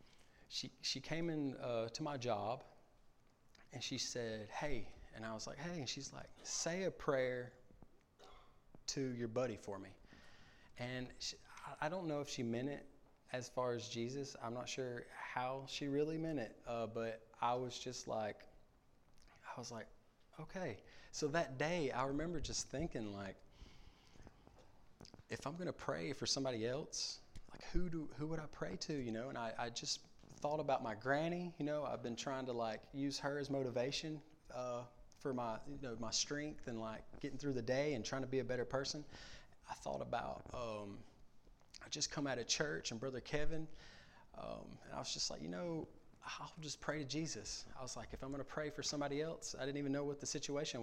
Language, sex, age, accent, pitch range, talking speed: English, male, 20-39, American, 120-150 Hz, 195 wpm